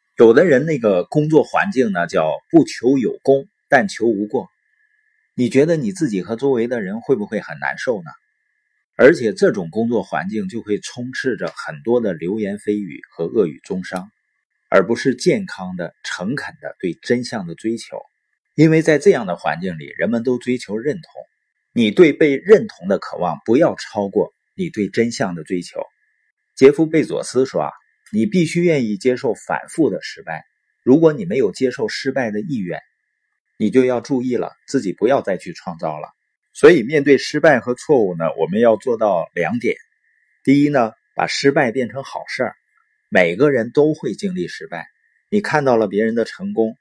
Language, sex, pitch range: Chinese, male, 115-180 Hz